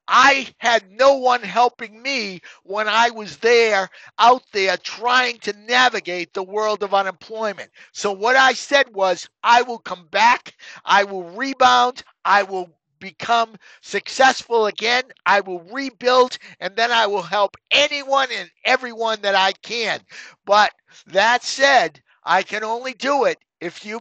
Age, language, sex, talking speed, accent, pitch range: 50-69, English, male, 150 wpm, American, 200-255 Hz